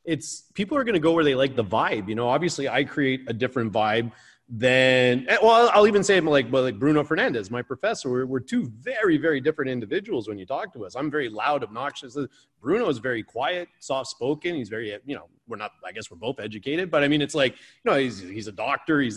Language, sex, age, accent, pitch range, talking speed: English, male, 30-49, American, 115-150 Hz, 240 wpm